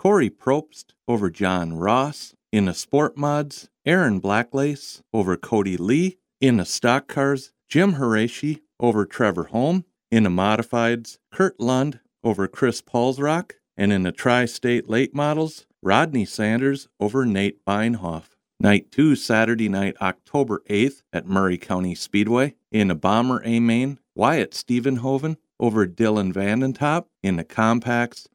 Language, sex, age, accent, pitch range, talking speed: English, male, 50-69, American, 100-135 Hz, 135 wpm